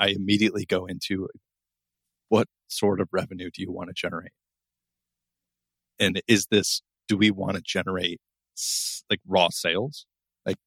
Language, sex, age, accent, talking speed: English, male, 30-49, American, 140 wpm